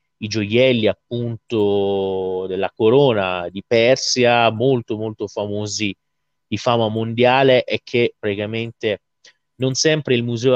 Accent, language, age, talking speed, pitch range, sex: native, Italian, 30-49, 115 wpm, 105-135 Hz, male